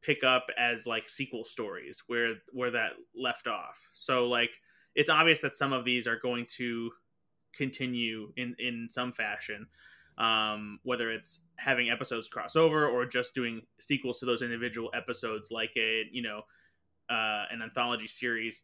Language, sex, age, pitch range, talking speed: English, male, 20-39, 115-130 Hz, 160 wpm